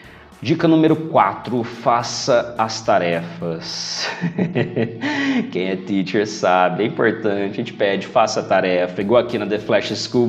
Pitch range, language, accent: 95-120 Hz, Portuguese, Brazilian